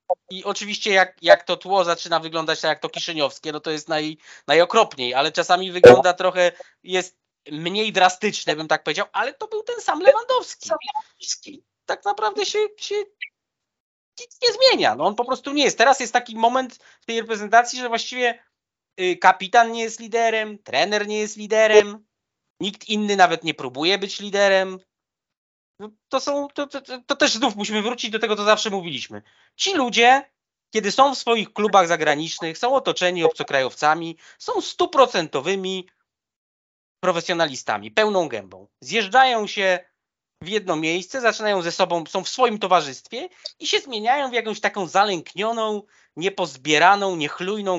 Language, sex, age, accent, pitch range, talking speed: Polish, male, 20-39, native, 165-230 Hz, 150 wpm